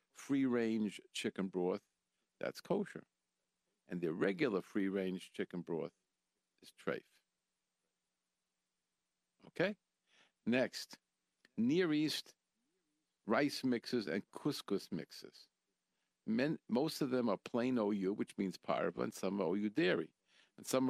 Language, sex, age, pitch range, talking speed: English, male, 50-69, 100-135 Hz, 125 wpm